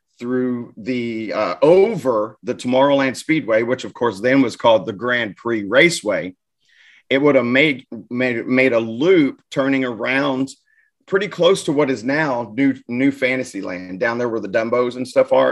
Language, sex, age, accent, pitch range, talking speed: English, male, 30-49, American, 115-135 Hz, 170 wpm